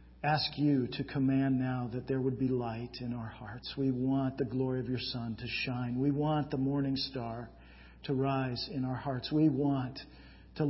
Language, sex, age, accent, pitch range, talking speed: English, male, 50-69, American, 120-145 Hz, 195 wpm